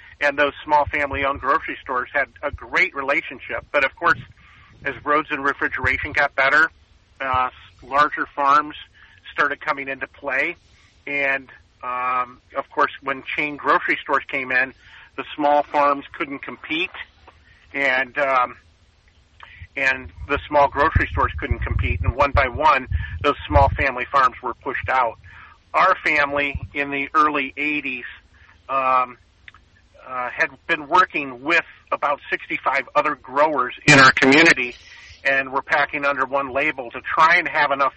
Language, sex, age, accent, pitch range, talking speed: English, male, 40-59, American, 125-145 Hz, 145 wpm